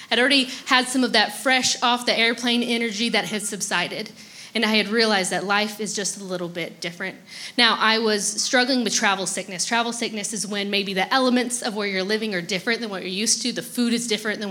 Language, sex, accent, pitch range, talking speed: English, female, American, 195-235 Hz, 220 wpm